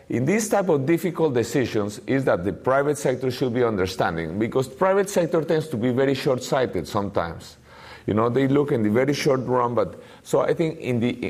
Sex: male